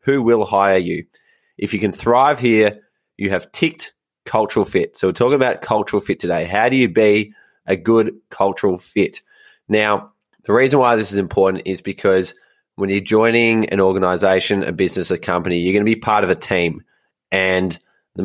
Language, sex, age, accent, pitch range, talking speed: English, male, 20-39, Australian, 95-110 Hz, 185 wpm